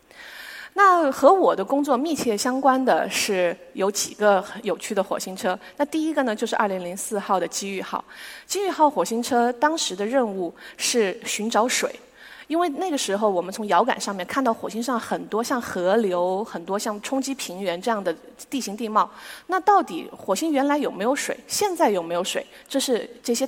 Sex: female